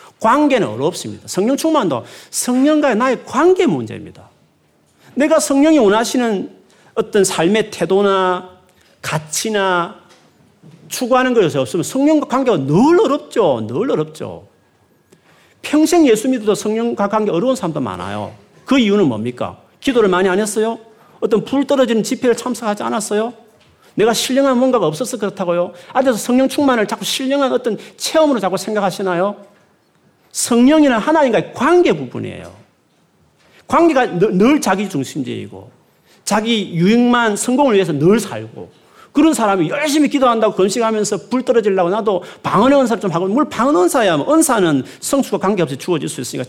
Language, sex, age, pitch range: Korean, male, 40-59, 185-260 Hz